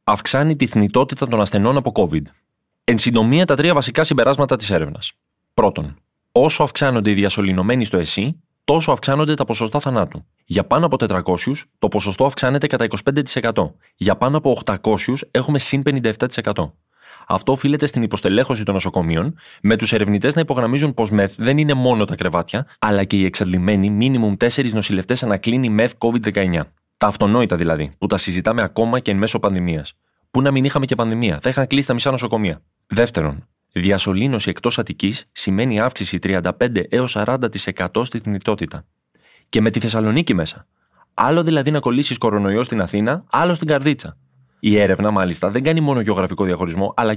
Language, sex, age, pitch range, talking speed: Greek, male, 20-39, 100-135 Hz, 160 wpm